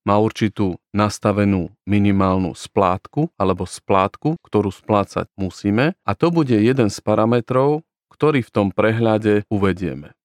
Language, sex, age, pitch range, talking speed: Slovak, male, 40-59, 100-120 Hz, 125 wpm